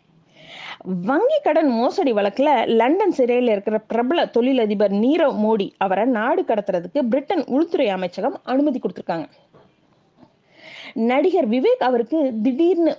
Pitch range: 210-290 Hz